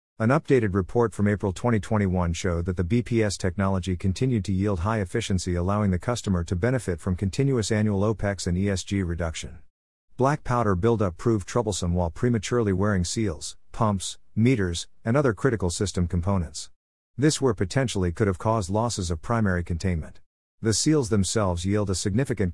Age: 50-69